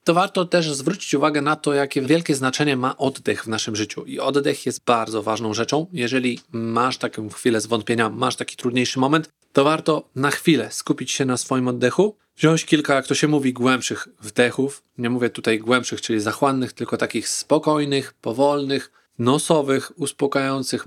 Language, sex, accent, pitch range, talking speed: Polish, male, native, 125-140 Hz, 175 wpm